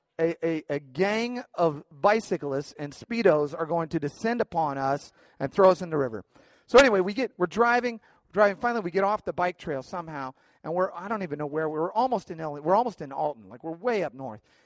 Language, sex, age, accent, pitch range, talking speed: English, male, 40-59, American, 135-180 Hz, 245 wpm